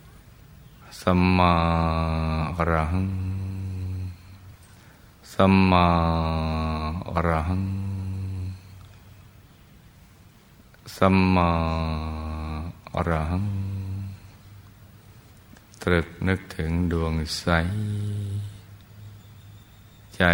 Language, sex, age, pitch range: Thai, male, 20-39, 80-95 Hz